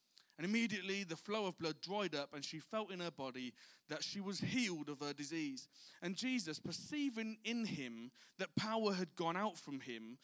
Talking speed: 195 wpm